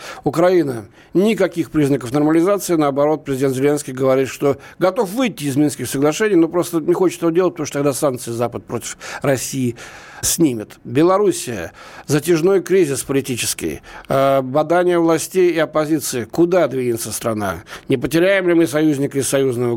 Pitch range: 140-180 Hz